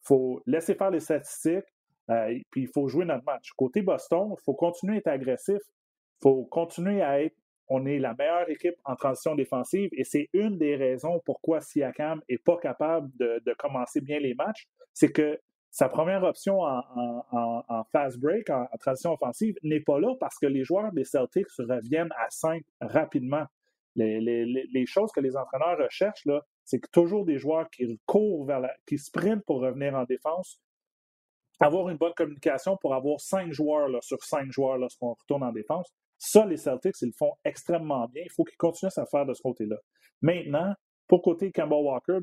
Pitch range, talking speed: 130-175 Hz, 200 wpm